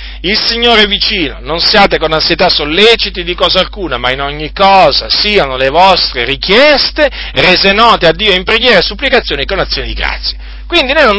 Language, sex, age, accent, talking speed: Italian, male, 40-59, native, 195 wpm